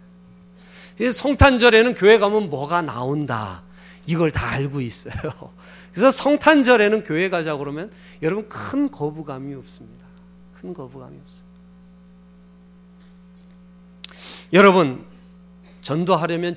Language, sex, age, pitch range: Korean, male, 40-59, 155-200 Hz